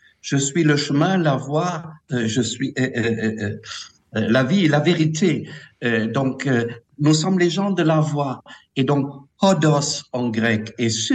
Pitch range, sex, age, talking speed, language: 130-185 Hz, male, 60-79, 165 wpm, French